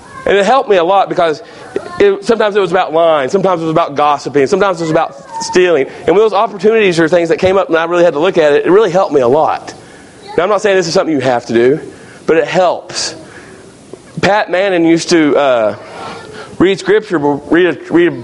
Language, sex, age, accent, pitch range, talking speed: English, male, 40-59, American, 160-205 Hz, 225 wpm